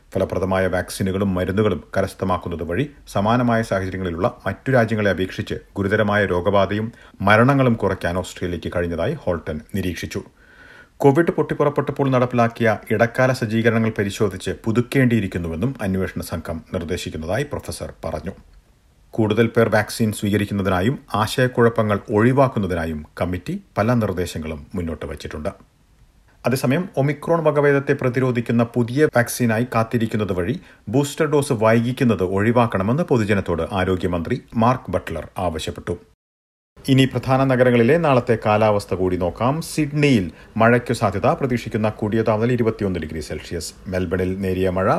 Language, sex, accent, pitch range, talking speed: Malayalam, male, native, 95-120 Hz, 105 wpm